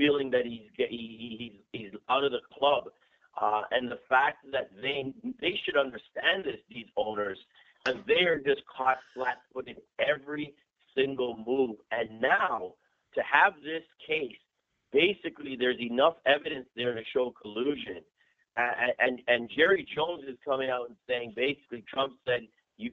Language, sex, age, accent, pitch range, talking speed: English, male, 50-69, American, 120-190 Hz, 150 wpm